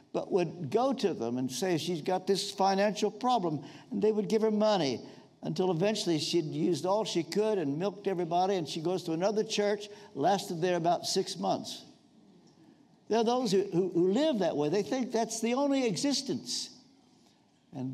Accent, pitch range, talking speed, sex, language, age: American, 165-245 Hz, 185 wpm, male, English, 60-79